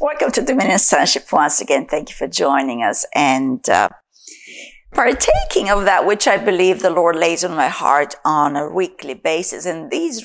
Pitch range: 175-245 Hz